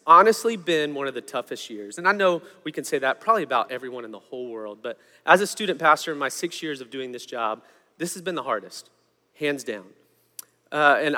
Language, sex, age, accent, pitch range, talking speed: English, male, 30-49, American, 145-175 Hz, 230 wpm